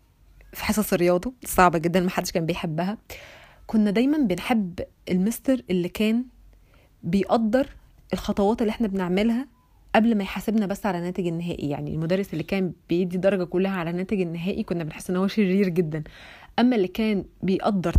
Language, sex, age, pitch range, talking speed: Arabic, female, 20-39, 175-210 Hz, 155 wpm